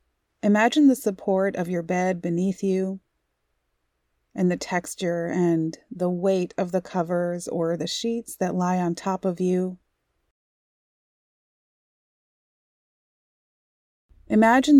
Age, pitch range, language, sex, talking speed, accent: 30-49, 165-195 Hz, English, female, 110 wpm, American